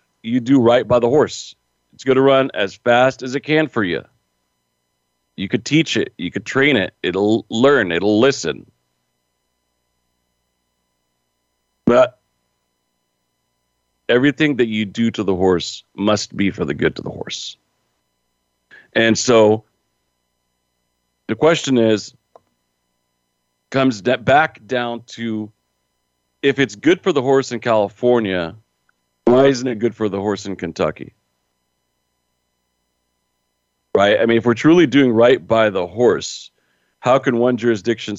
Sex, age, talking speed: male, 40-59, 135 wpm